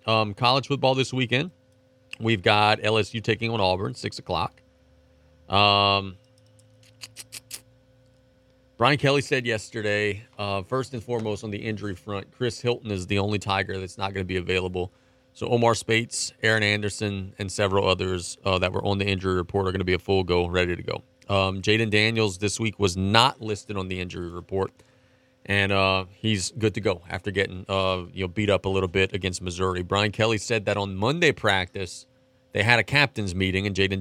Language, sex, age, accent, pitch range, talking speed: English, male, 30-49, American, 95-115 Hz, 190 wpm